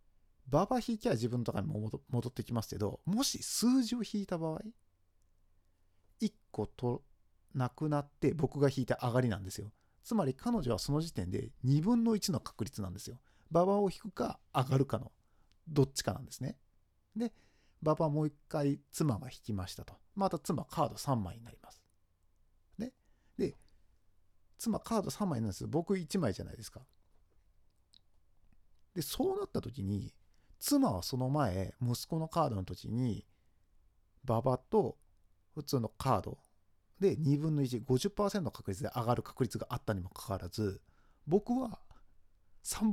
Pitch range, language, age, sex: 90-155 Hz, Japanese, 40-59, male